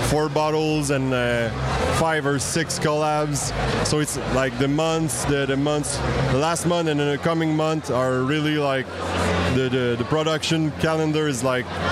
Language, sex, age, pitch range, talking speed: English, male, 20-39, 130-155 Hz, 165 wpm